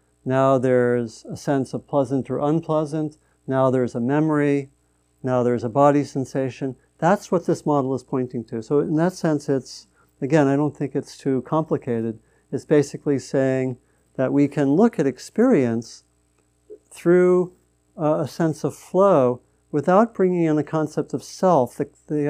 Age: 50-69